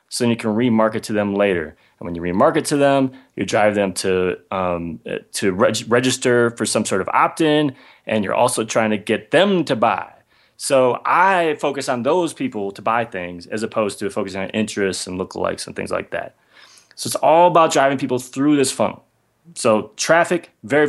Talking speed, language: 200 wpm, English